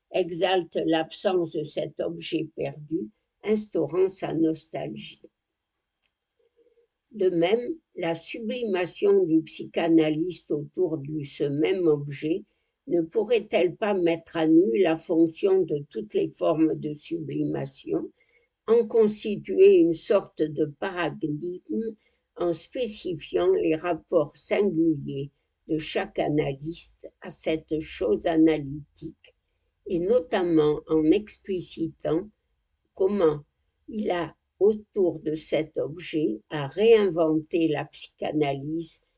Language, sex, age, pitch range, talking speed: French, female, 60-79, 155-220 Hz, 105 wpm